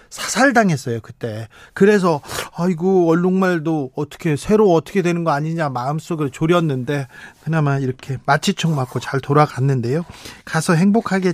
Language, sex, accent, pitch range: Korean, male, native, 150-195 Hz